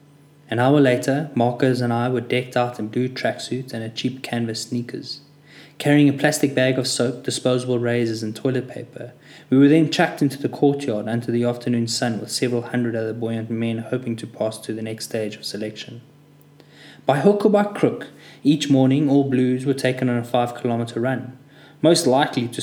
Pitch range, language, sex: 120-145 Hz, English, male